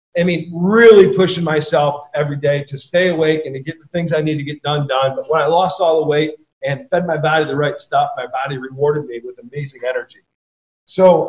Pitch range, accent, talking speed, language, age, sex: 155-200 Hz, American, 230 wpm, English, 40-59, male